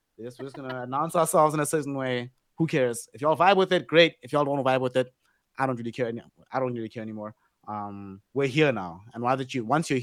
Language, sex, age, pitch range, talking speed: English, male, 20-39, 115-145 Hz, 265 wpm